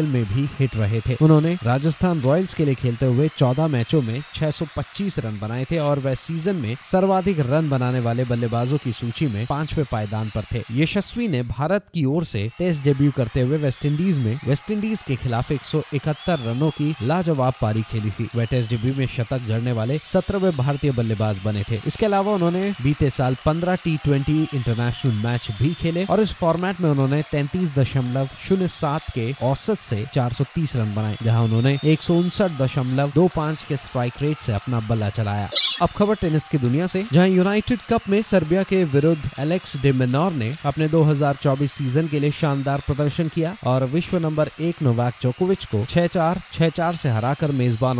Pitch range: 125-165 Hz